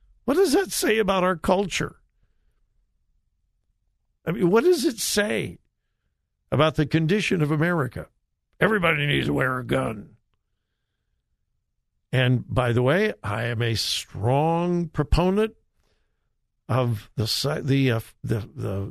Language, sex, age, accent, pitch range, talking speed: English, male, 60-79, American, 110-160 Hz, 115 wpm